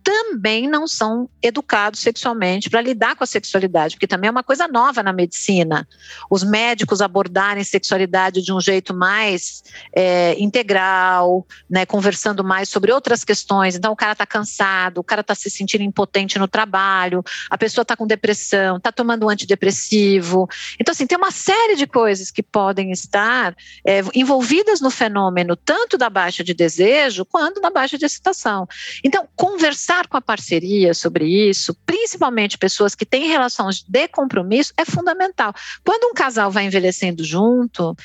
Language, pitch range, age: Portuguese, 190-280 Hz, 50-69